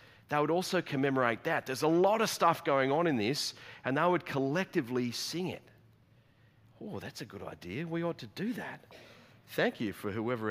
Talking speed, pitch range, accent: 195 wpm, 120-150 Hz, Australian